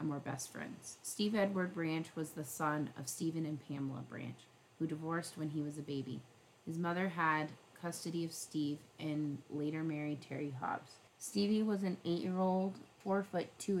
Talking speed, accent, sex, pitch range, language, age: 170 wpm, American, female, 150-170 Hz, English, 30-49